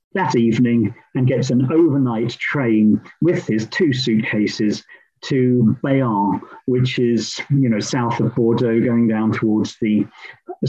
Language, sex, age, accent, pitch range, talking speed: English, male, 50-69, British, 115-135 Hz, 140 wpm